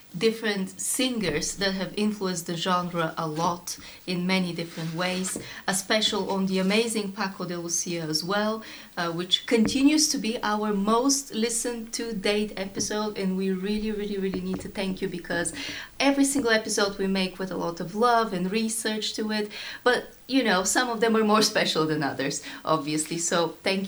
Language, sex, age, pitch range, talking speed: English, female, 30-49, 190-230 Hz, 180 wpm